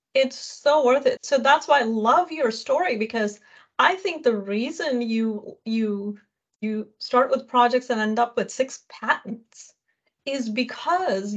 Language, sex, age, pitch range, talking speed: English, female, 30-49, 210-255 Hz, 160 wpm